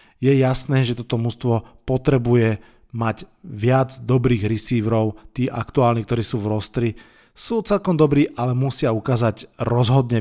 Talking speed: 135 wpm